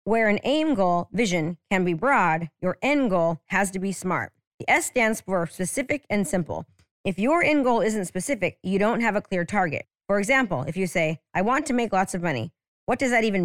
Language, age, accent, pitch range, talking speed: English, 30-49, American, 180-230 Hz, 225 wpm